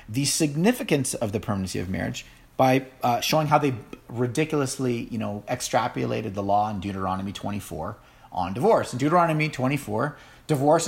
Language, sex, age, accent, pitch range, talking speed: English, male, 40-59, American, 120-140 Hz, 150 wpm